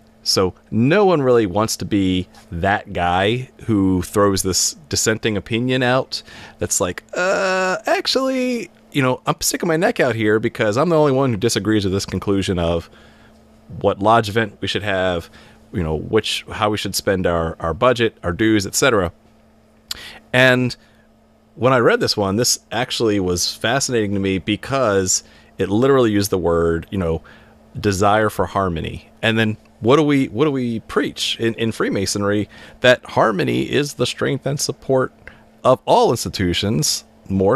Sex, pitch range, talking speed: male, 95-125 Hz, 165 wpm